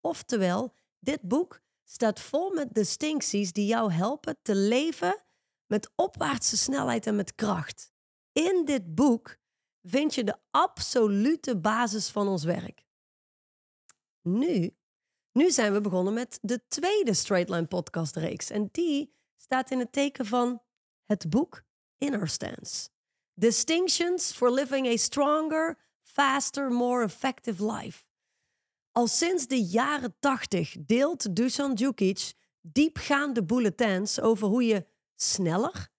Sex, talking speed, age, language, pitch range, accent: female, 125 wpm, 30-49, Dutch, 205-280 Hz, Dutch